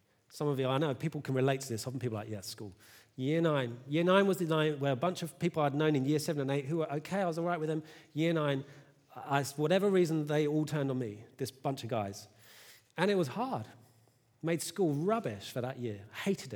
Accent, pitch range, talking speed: British, 125-185 Hz, 250 wpm